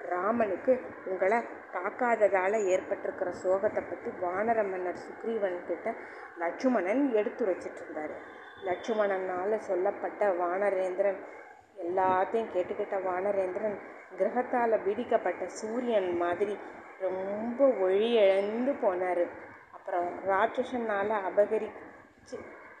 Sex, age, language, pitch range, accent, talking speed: female, 20-39, Tamil, 190-230 Hz, native, 75 wpm